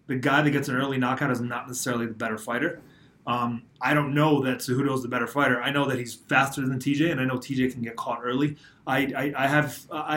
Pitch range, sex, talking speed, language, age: 125-145 Hz, male, 235 wpm, English, 20-39